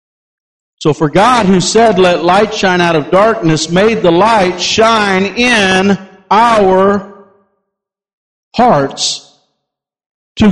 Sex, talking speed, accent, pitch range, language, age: male, 110 wpm, American, 145-200 Hz, English, 50-69